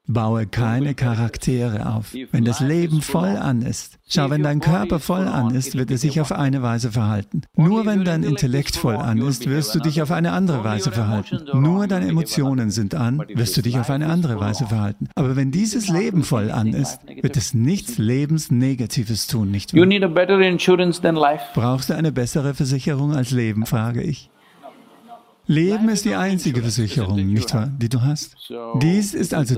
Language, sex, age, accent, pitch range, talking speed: English, male, 50-69, German, 115-160 Hz, 180 wpm